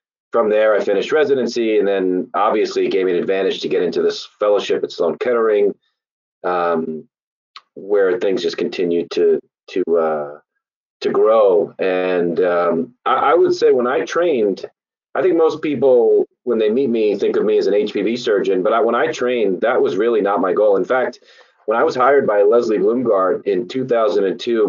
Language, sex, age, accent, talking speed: English, male, 40-59, American, 185 wpm